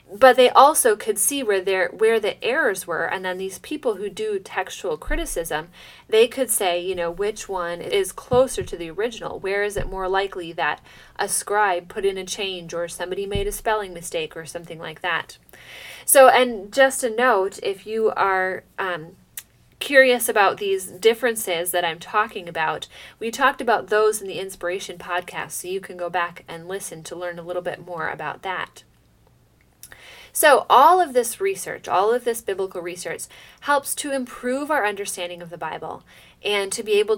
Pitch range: 180-280 Hz